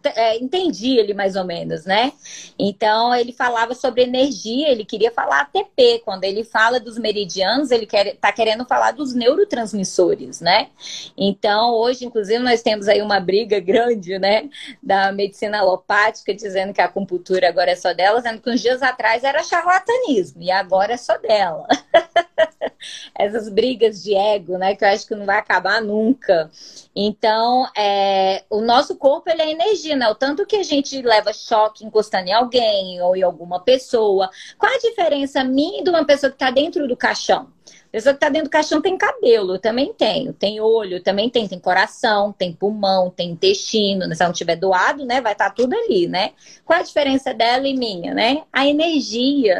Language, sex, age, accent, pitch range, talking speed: Portuguese, female, 20-39, Brazilian, 200-275 Hz, 185 wpm